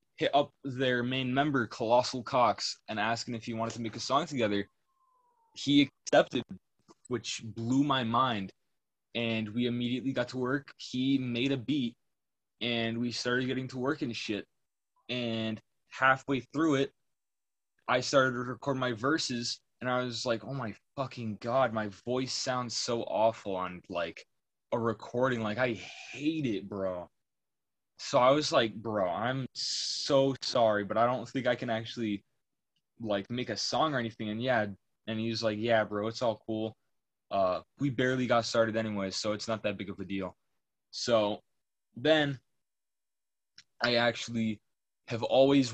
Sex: male